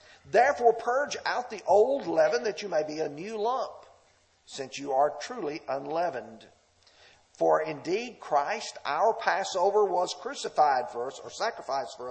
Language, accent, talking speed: English, American, 150 wpm